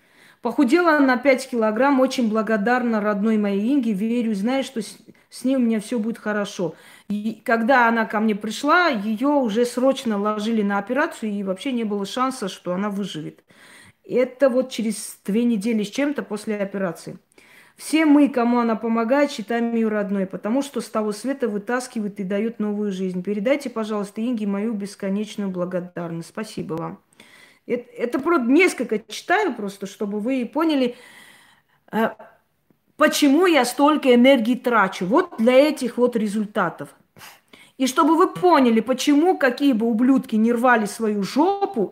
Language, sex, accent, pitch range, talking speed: Russian, female, native, 210-270 Hz, 150 wpm